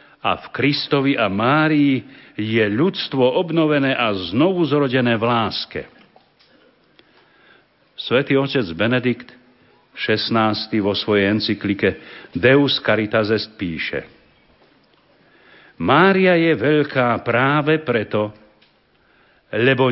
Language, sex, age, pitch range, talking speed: Slovak, male, 60-79, 110-150 Hz, 85 wpm